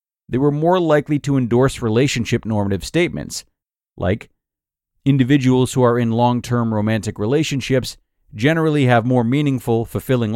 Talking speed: 135 wpm